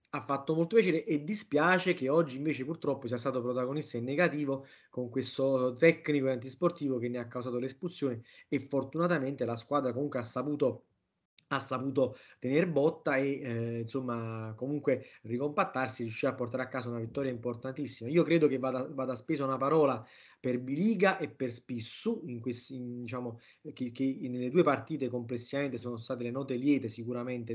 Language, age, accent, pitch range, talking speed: Italian, 20-39, native, 125-150 Hz, 170 wpm